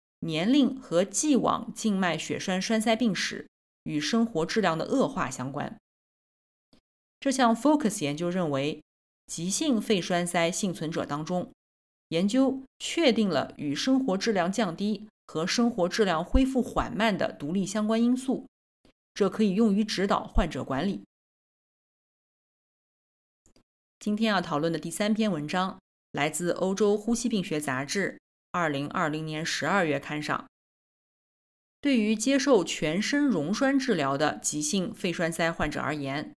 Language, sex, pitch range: Chinese, female, 160-225 Hz